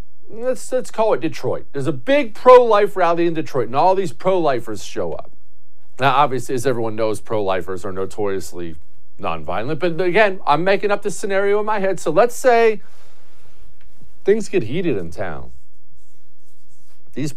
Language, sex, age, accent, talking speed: English, male, 50-69, American, 160 wpm